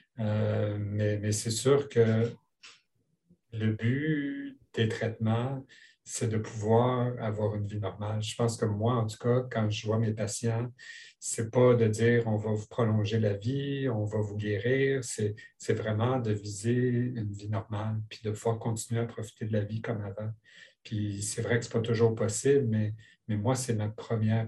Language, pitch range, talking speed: English, 110-120 Hz, 185 wpm